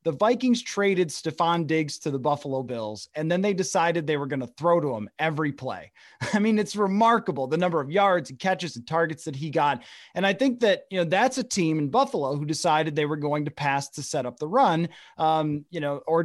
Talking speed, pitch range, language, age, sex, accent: 235 wpm, 150-190 Hz, English, 30-49, male, American